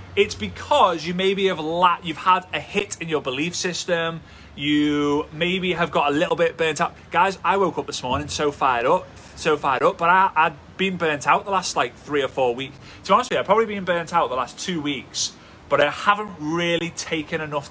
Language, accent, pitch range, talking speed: English, British, 140-190 Hz, 230 wpm